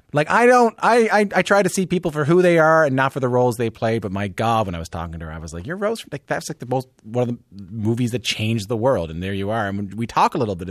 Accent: American